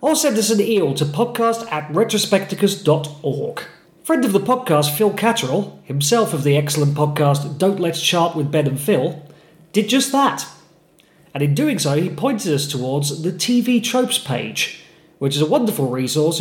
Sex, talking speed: male, 170 wpm